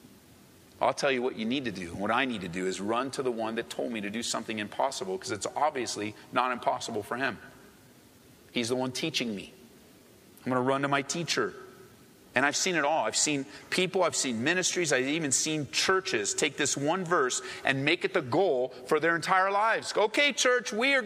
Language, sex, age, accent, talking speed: English, male, 40-59, American, 215 wpm